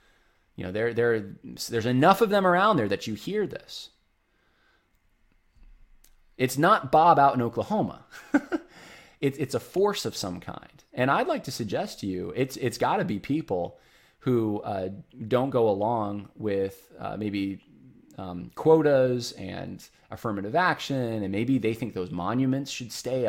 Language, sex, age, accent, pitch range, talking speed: English, male, 20-39, American, 100-135 Hz, 155 wpm